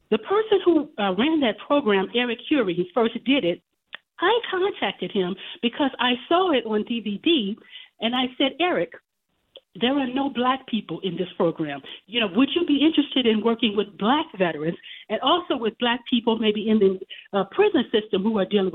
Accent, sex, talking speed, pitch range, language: American, female, 190 wpm, 210-290 Hz, English